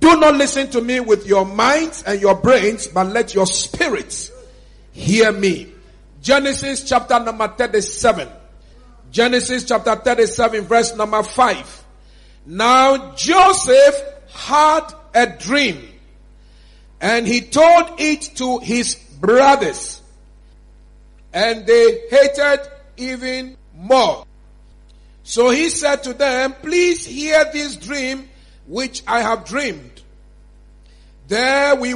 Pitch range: 230-280 Hz